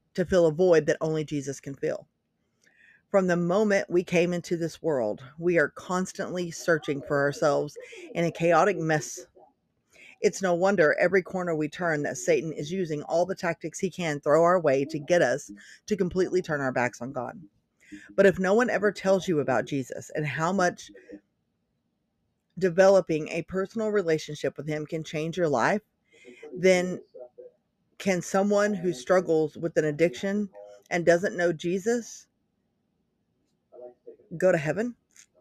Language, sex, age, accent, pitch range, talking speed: English, female, 40-59, American, 155-195 Hz, 160 wpm